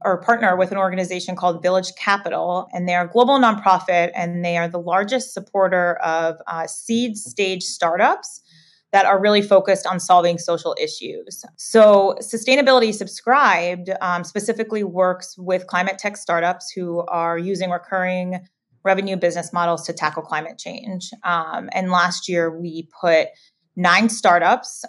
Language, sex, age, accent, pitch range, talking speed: English, female, 20-39, American, 170-195 Hz, 145 wpm